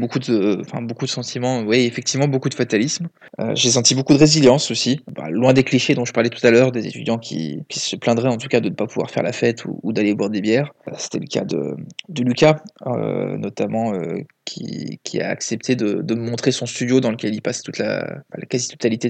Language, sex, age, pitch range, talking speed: French, male, 20-39, 115-140 Hz, 240 wpm